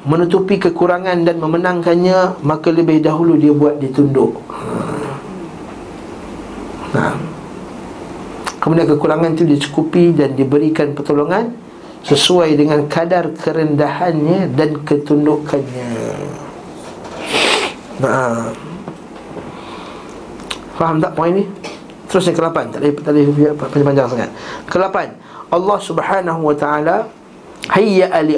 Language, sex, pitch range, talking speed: Malay, male, 145-180 Hz, 95 wpm